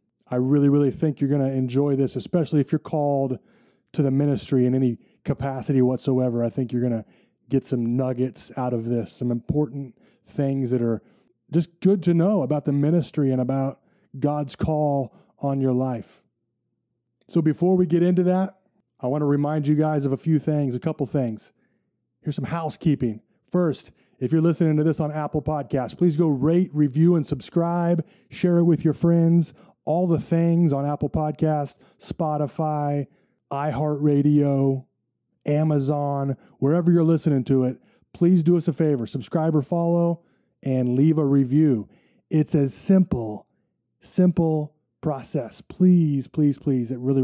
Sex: male